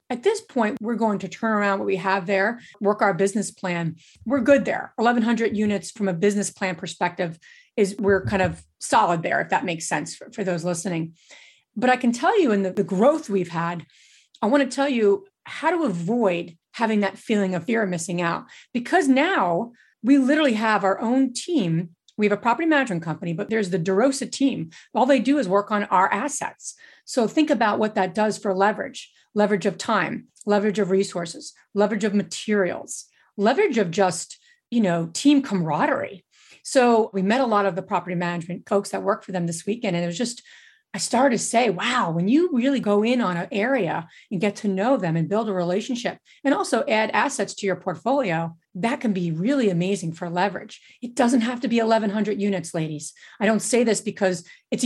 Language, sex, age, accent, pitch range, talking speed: English, female, 30-49, American, 190-250 Hz, 205 wpm